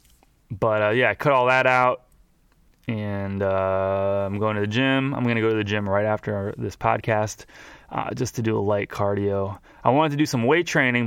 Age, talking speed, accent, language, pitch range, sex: 20-39, 215 wpm, American, English, 100-125 Hz, male